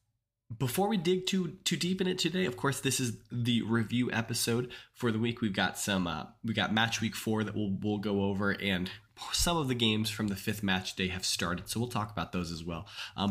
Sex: male